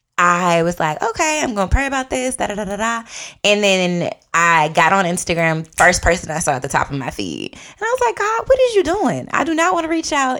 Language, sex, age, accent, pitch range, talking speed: English, female, 20-39, American, 150-205 Hz, 270 wpm